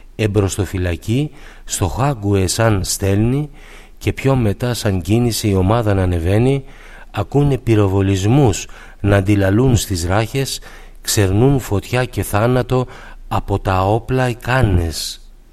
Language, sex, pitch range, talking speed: Greek, male, 100-130 Hz, 110 wpm